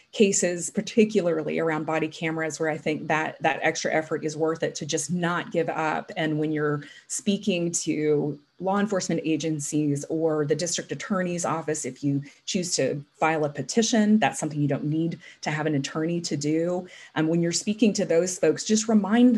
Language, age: English, 30-49